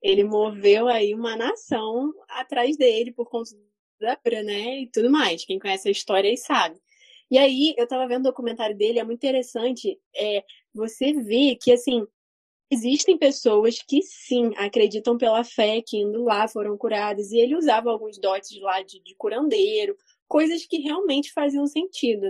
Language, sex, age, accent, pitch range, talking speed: Portuguese, female, 10-29, Brazilian, 220-280 Hz, 170 wpm